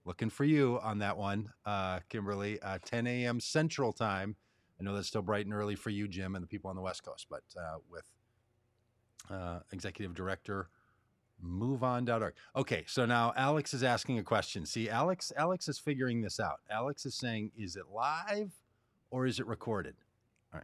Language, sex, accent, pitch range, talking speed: English, male, American, 100-125 Hz, 185 wpm